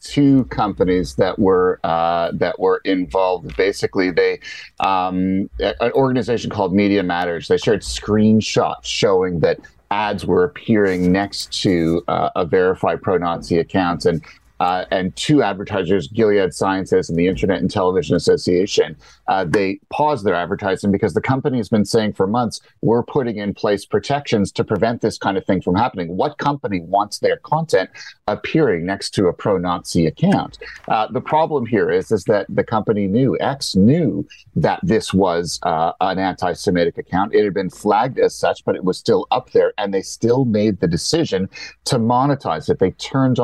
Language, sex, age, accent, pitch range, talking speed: English, male, 30-49, American, 95-130 Hz, 170 wpm